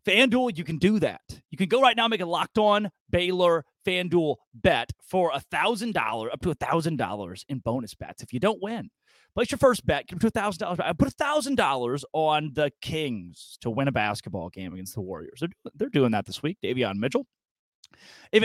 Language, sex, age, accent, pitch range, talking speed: English, male, 30-49, American, 140-220 Hz, 200 wpm